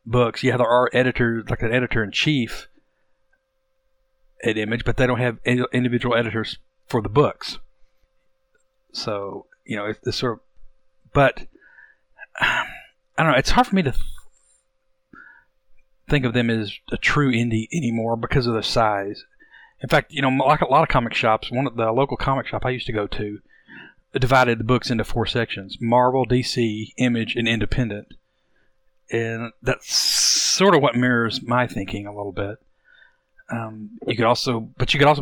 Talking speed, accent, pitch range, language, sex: 170 wpm, American, 115-140 Hz, English, male